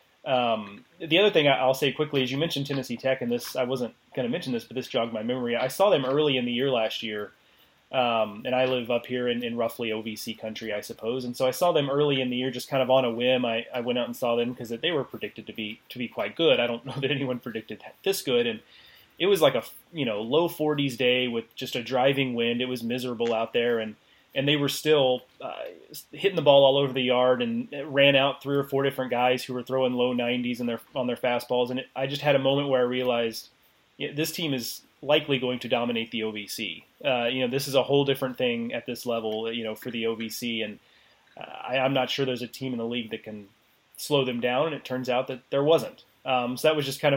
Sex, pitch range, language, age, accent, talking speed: male, 120-140 Hz, English, 30-49, American, 260 wpm